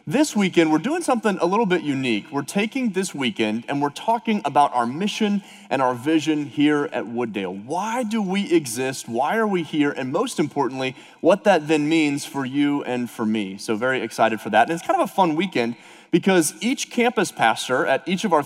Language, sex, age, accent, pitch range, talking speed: English, male, 30-49, American, 115-170 Hz, 210 wpm